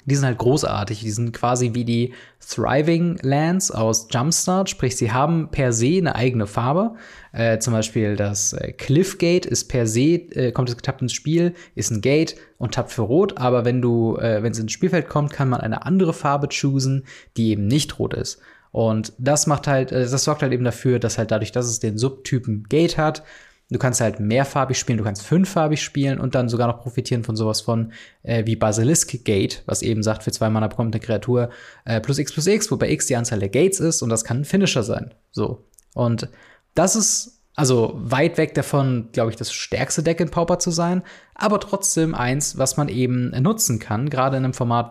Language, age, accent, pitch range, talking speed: German, 20-39, German, 115-150 Hz, 210 wpm